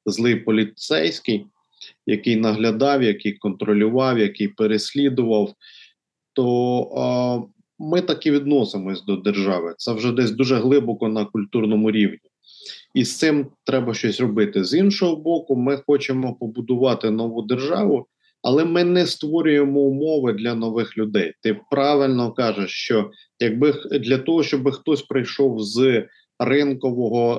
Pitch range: 115-140 Hz